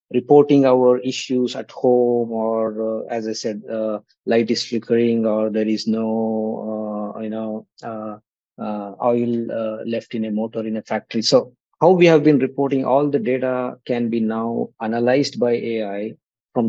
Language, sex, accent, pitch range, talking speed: English, male, Indian, 115-140 Hz, 175 wpm